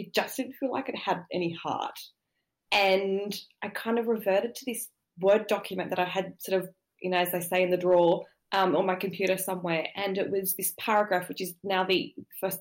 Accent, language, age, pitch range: Australian, English, 20-39, 185-210 Hz